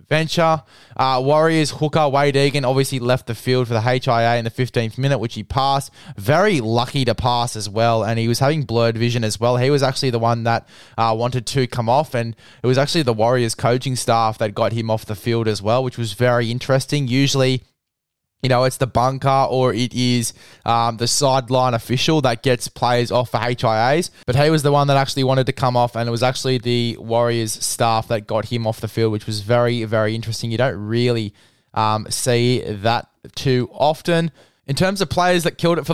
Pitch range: 115-140 Hz